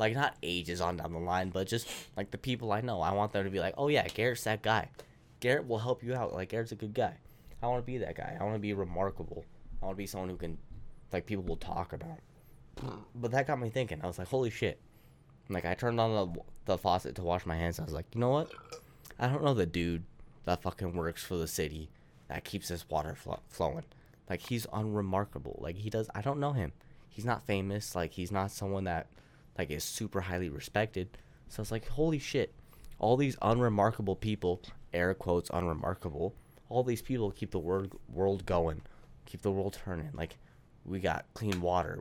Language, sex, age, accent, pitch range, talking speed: English, male, 20-39, American, 85-115 Hz, 225 wpm